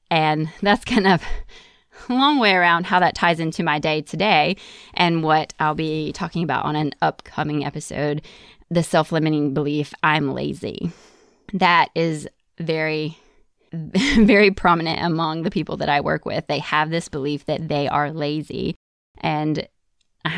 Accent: American